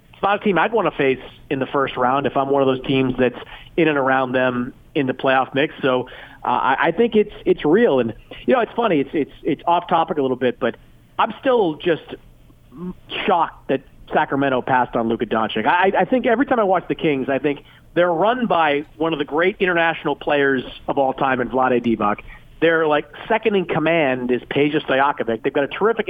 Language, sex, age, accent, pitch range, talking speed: English, male, 40-59, American, 130-175 Hz, 225 wpm